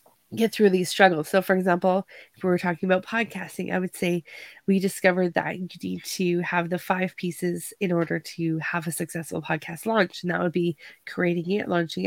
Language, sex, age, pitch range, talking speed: English, female, 20-39, 170-195 Hz, 205 wpm